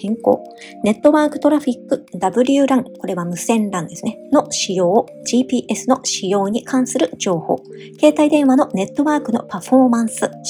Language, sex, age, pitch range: Japanese, male, 40-59, 205-280 Hz